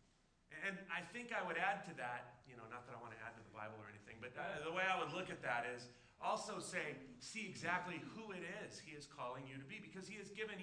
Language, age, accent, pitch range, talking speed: English, 30-49, American, 125-170 Hz, 265 wpm